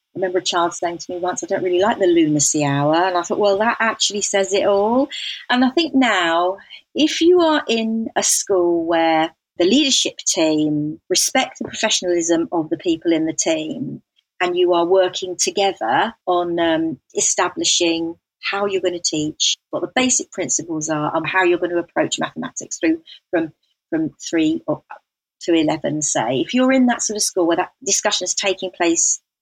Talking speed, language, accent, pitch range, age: 190 wpm, English, British, 175-260 Hz, 40-59